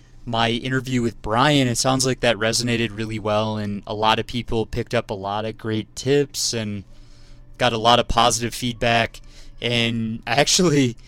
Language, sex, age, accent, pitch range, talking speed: English, male, 20-39, American, 110-125 Hz, 175 wpm